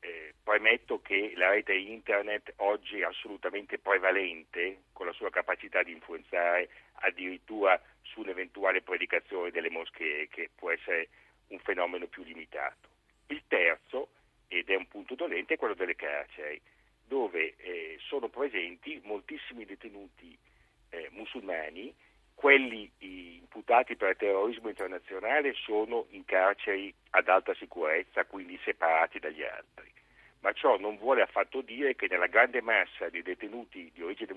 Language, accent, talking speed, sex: Italian, native, 135 wpm, male